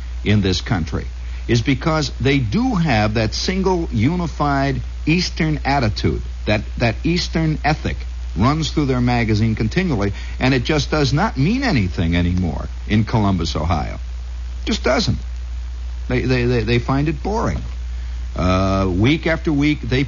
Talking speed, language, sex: 135 wpm, English, male